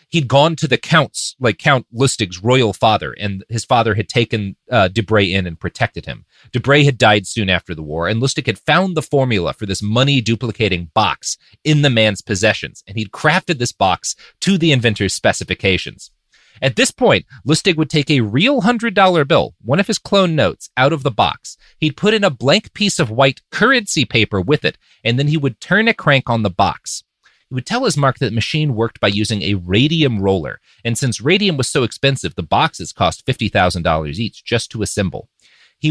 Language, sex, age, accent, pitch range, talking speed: English, male, 30-49, American, 100-155 Hz, 200 wpm